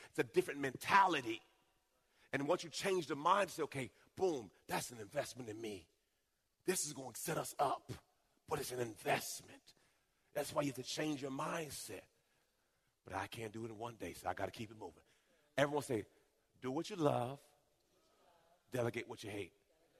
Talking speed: 185 wpm